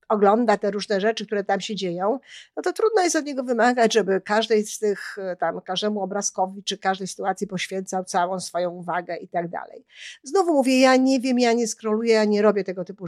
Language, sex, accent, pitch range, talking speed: Polish, female, native, 190-245 Hz, 205 wpm